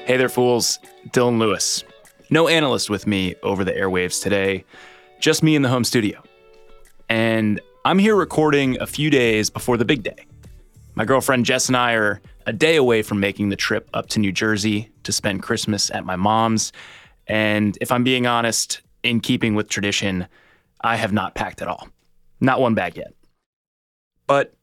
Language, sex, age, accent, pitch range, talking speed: English, male, 20-39, American, 100-130 Hz, 180 wpm